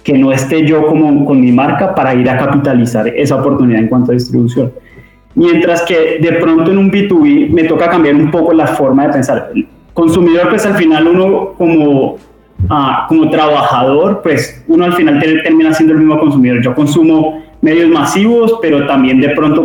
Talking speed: 185 wpm